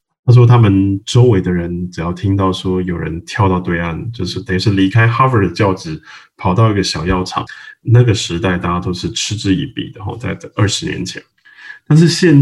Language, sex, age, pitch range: Chinese, male, 20-39, 90-115 Hz